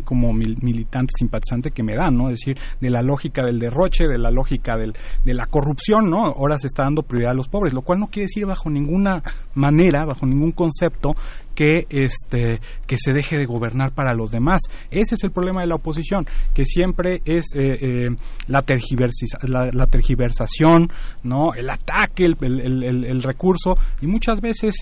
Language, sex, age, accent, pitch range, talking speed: Spanish, male, 30-49, Mexican, 125-165 Hz, 190 wpm